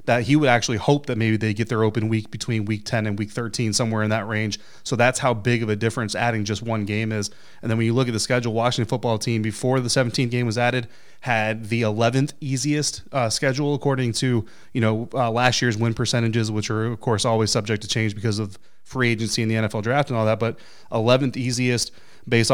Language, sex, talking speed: English, male, 235 wpm